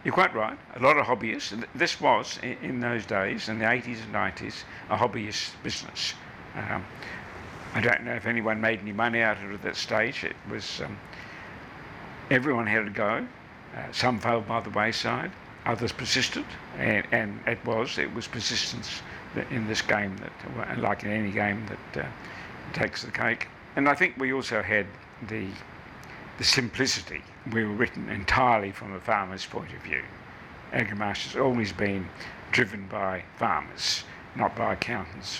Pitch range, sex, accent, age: 100-115 Hz, male, British, 60-79